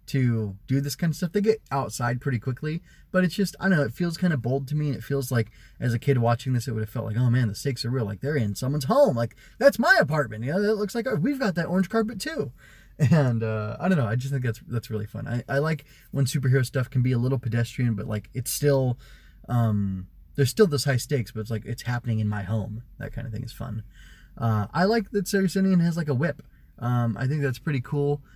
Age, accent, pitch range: 20-39, American, 115-155 Hz